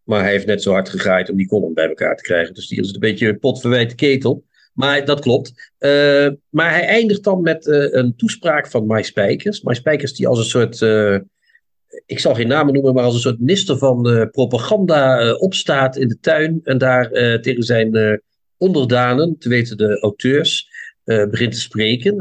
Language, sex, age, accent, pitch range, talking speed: Dutch, male, 50-69, Dutch, 110-140 Hz, 210 wpm